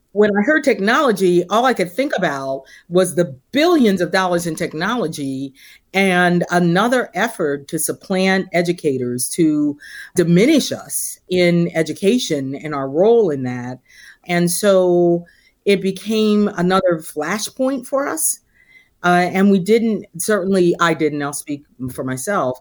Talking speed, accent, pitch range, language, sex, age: 135 wpm, American, 155-210 Hz, English, female, 40-59